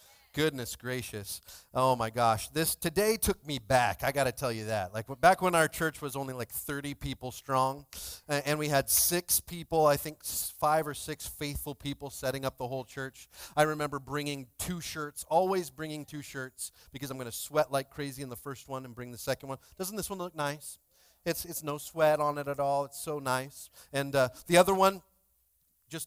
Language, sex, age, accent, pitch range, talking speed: English, male, 40-59, American, 115-150 Hz, 210 wpm